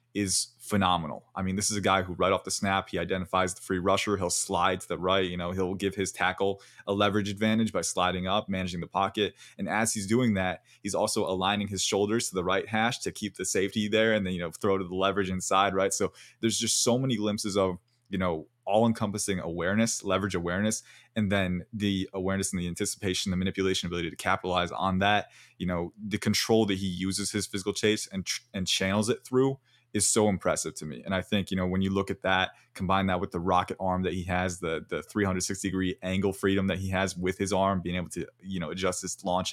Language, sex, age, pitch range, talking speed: English, male, 20-39, 90-105 Hz, 230 wpm